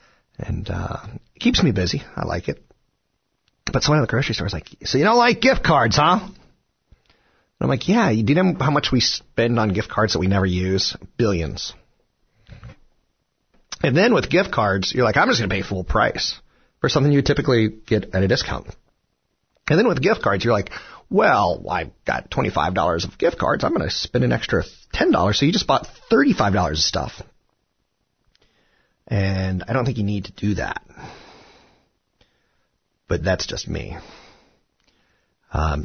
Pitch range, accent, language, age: 90-130 Hz, American, English, 30-49